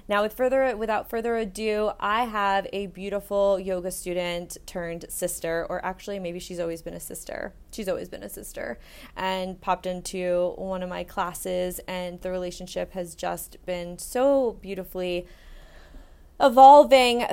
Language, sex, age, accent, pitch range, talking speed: English, female, 20-39, American, 175-200 Hz, 140 wpm